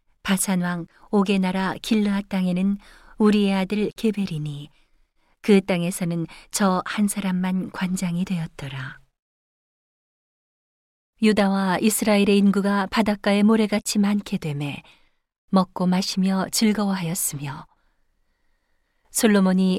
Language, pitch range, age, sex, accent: Korean, 170-210 Hz, 40-59, female, native